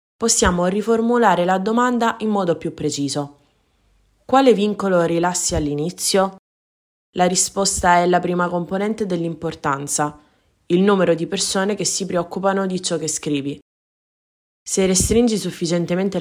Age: 20-39